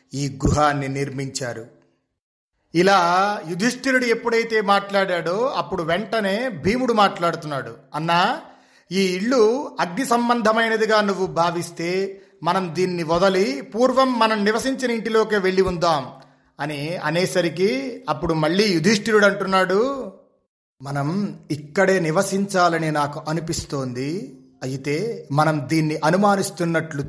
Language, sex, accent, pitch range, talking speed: Telugu, male, native, 145-185 Hz, 95 wpm